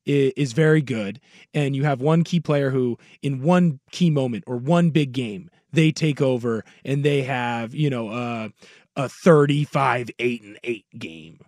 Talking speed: 165 wpm